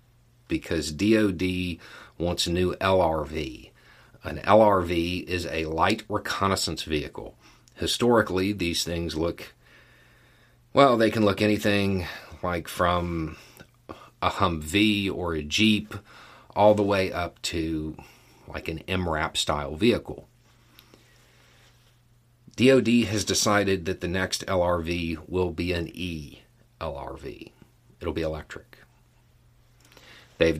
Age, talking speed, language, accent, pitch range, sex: 40-59, 105 wpm, English, American, 80-110 Hz, male